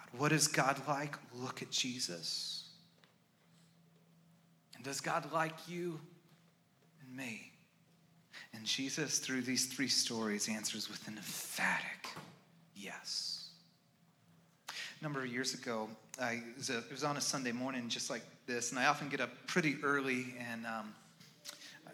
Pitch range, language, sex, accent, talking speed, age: 130-165 Hz, English, male, American, 135 wpm, 30-49